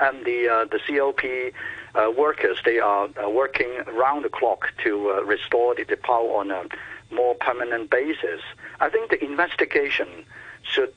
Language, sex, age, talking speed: English, male, 60-79, 155 wpm